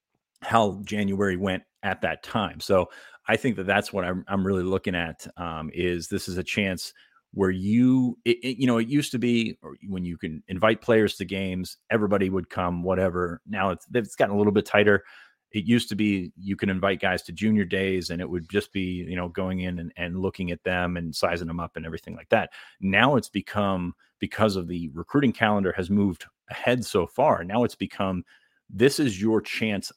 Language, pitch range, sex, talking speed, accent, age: English, 90-105 Hz, male, 210 wpm, American, 30-49